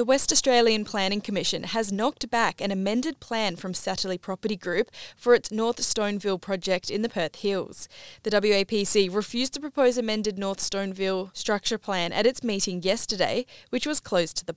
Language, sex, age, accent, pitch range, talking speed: English, female, 10-29, Australian, 190-230 Hz, 175 wpm